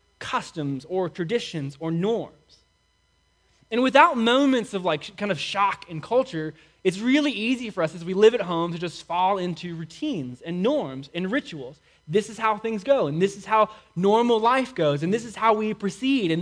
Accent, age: American, 20-39